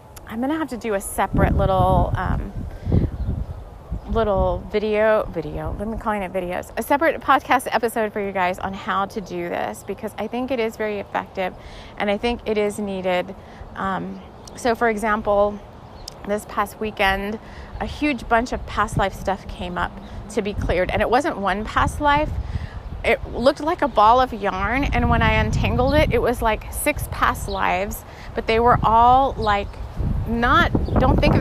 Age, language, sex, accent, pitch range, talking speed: 30-49, English, female, American, 200-260 Hz, 180 wpm